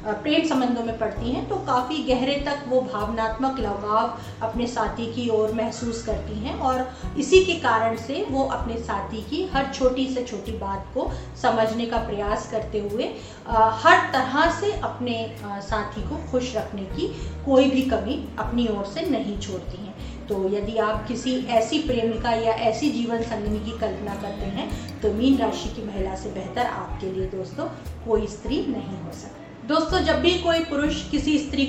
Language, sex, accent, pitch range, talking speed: Hindi, female, native, 225-275 Hz, 180 wpm